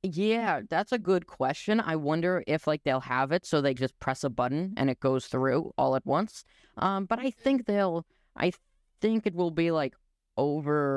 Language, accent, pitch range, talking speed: English, American, 130-170 Hz, 200 wpm